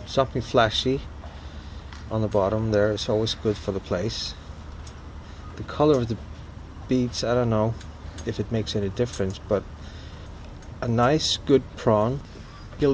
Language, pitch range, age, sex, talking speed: English, 85-115 Hz, 30-49, male, 145 wpm